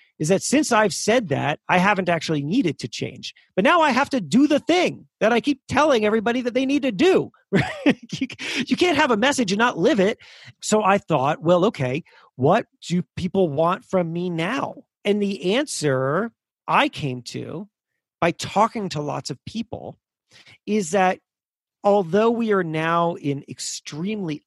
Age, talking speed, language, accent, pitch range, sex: 40-59, 175 wpm, English, American, 165-250 Hz, male